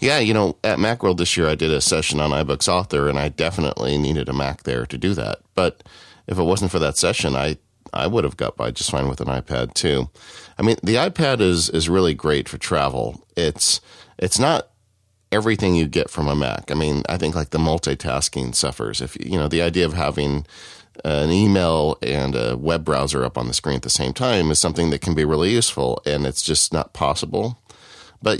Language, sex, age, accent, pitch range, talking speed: English, male, 40-59, American, 70-85 Hz, 220 wpm